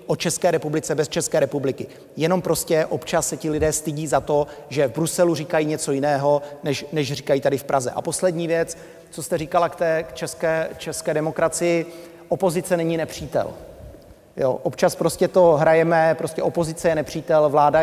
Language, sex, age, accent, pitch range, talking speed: Czech, male, 30-49, native, 155-170 Hz, 170 wpm